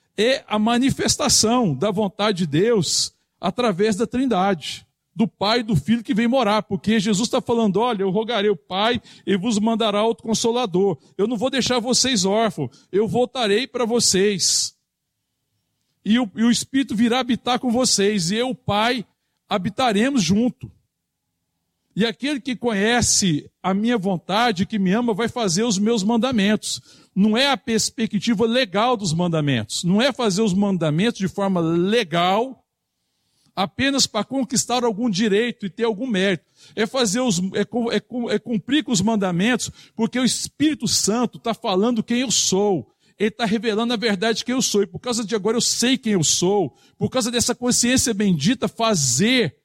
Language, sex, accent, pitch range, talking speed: Portuguese, male, Brazilian, 190-240 Hz, 170 wpm